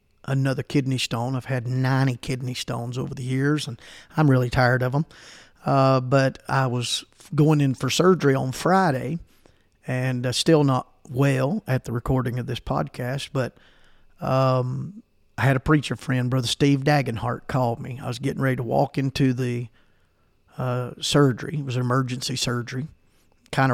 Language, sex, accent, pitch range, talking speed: English, male, American, 125-140 Hz, 165 wpm